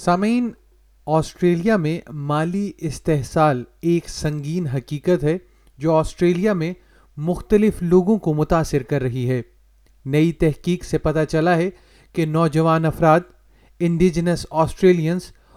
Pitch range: 155-180 Hz